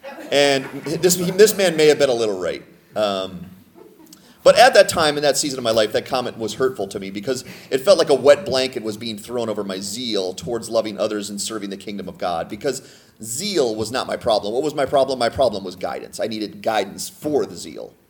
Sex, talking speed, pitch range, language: male, 230 wpm, 105-150 Hz, English